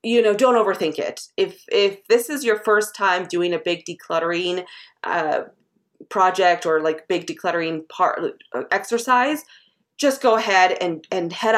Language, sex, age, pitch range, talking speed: English, female, 30-49, 165-210 Hz, 155 wpm